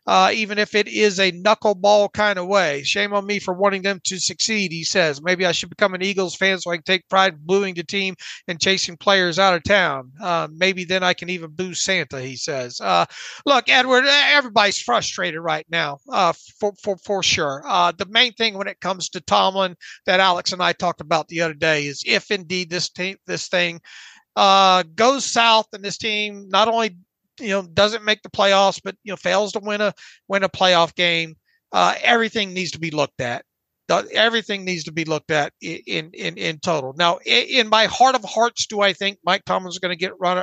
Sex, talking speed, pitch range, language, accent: male, 215 wpm, 175-205 Hz, English, American